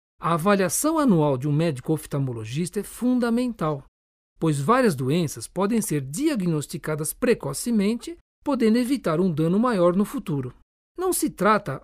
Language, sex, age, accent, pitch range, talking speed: Portuguese, male, 60-79, Brazilian, 155-230 Hz, 130 wpm